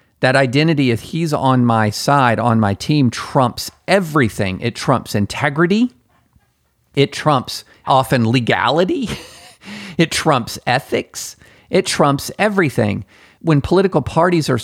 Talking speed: 120 wpm